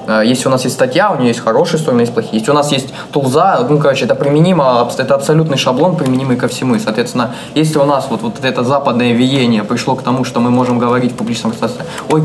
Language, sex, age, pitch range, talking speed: Russian, male, 20-39, 120-145 Hz, 230 wpm